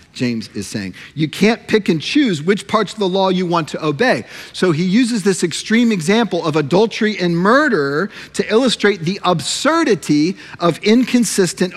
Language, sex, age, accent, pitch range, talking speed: English, male, 40-59, American, 160-215 Hz, 170 wpm